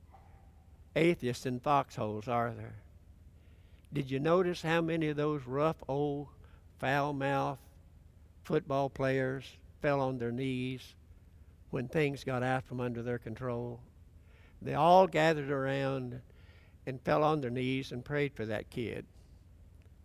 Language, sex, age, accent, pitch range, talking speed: English, male, 60-79, American, 85-140 Hz, 130 wpm